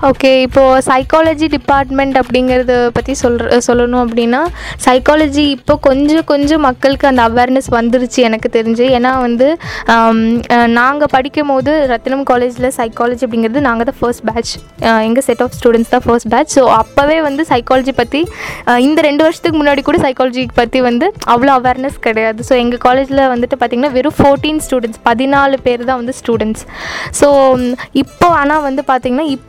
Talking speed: 145 wpm